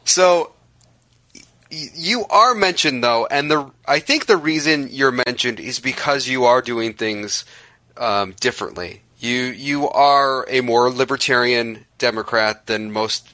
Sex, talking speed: male, 140 wpm